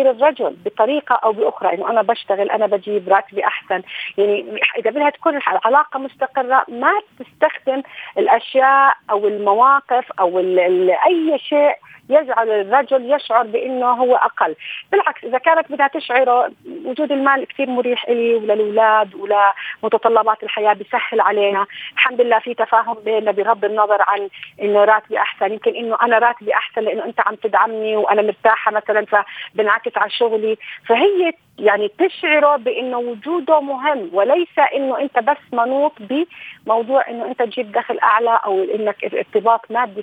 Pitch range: 205-270 Hz